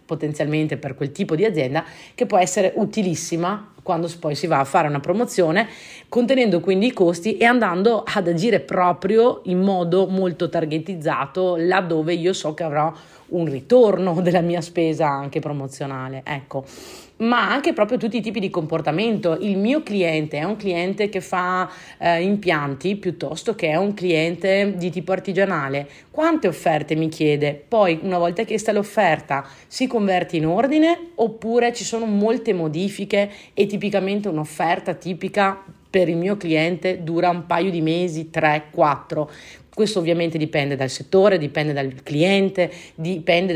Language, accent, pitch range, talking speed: Italian, native, 150-195 Hz, 155 wpm